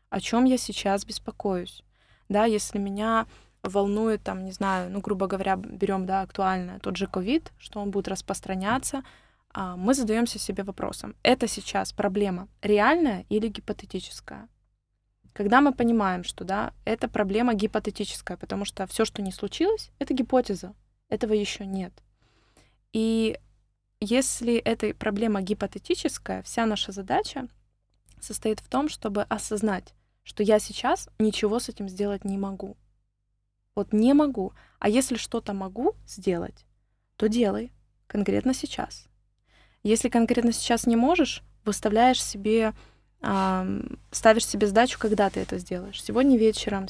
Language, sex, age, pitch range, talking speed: Russian, female, 20-39, 190-230 Hz, 135 wpm